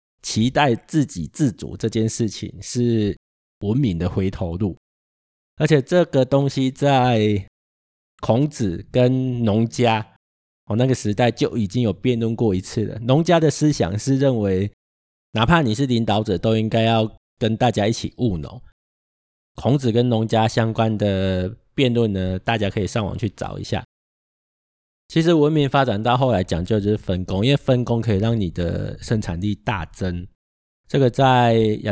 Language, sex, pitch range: Chinese, male, 95-120 Hz